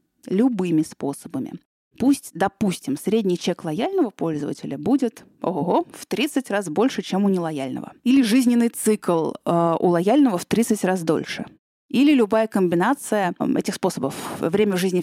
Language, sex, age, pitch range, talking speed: Russian, female, 20-39, 165-250 Hz, 140 wpm